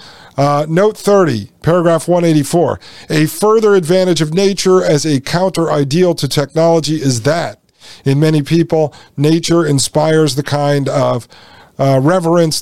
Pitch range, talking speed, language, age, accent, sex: 135-160 Hz, 130 wpm, English, 50-69, American, male